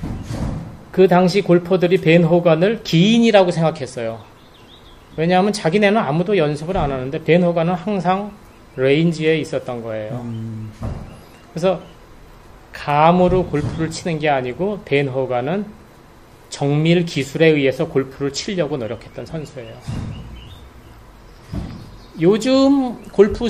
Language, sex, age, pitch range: Korean, male, 30-49, 135-195 Hz